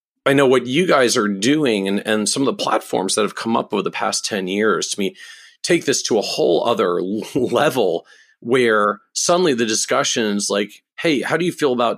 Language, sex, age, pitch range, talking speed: English, male, 40-59, 100-135 Hz, 215 wpm